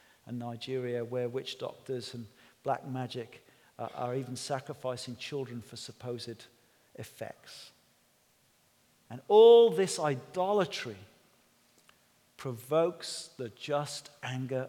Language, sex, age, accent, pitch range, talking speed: English, male, 40-59, British, 125-160 Hz, 95 wpm